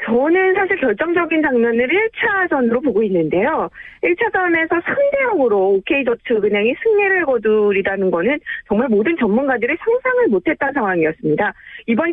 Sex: female